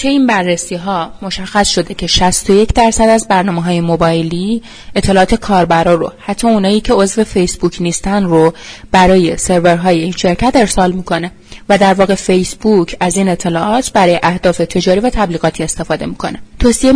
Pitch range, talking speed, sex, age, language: 170-210 Hz, 150 wpm, female, 30-49, Persian